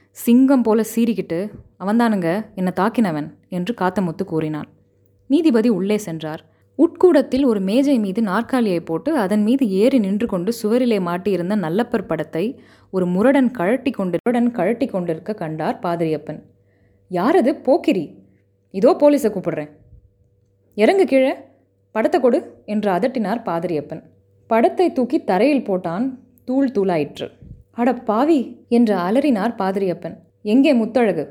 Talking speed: 115 wpm